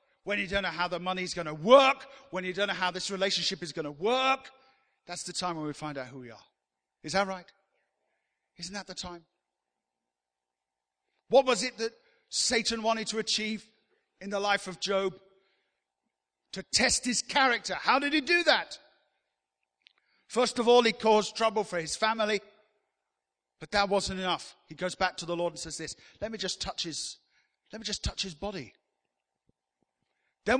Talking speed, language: 185 wpm, English